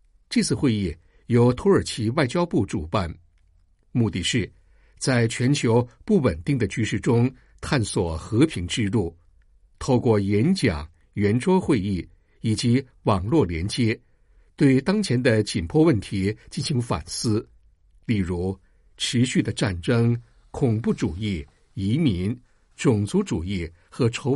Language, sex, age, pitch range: Chinese, male, 60-79, 90-130 Hz